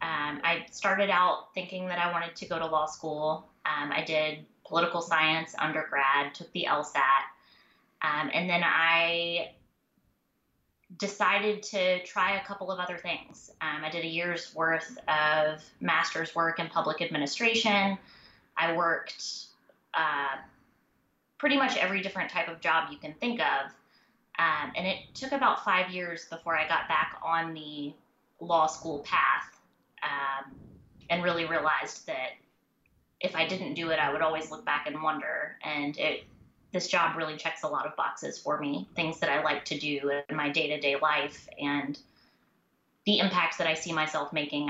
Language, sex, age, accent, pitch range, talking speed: English, female, 20-39, American, 155-175 Hz, 165 wpm